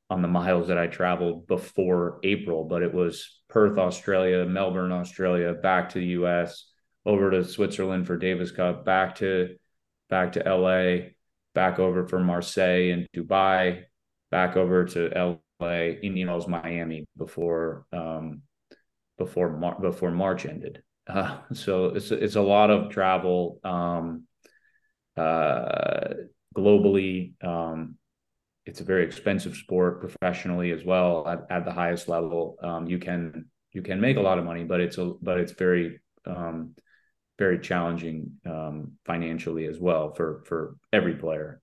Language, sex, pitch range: English, male, 85-95 Hz